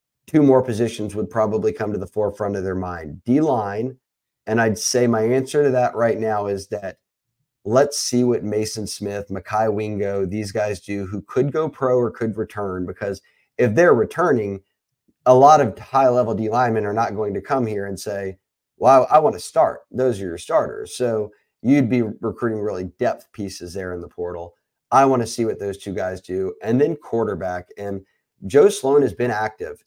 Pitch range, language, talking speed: 100-130 Hz, English, 205 wpm